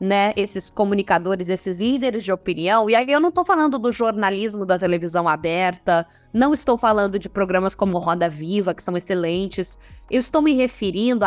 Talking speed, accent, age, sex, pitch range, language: 175 wpm, Brazilian, 10-29, female, 185-255 Hz, Portuguese